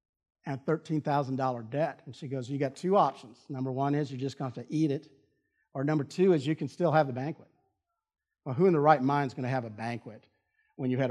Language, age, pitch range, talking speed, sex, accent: English, 50-69, 135-170 Hz, 250 wpm, male, American